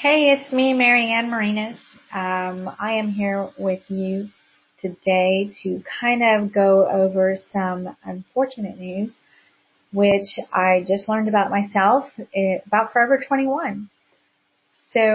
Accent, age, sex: American, 30-49, female